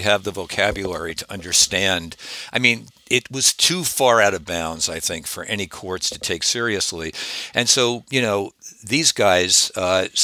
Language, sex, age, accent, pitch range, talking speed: English, male, 60-79, American, 90-120 Hz, 170 wpm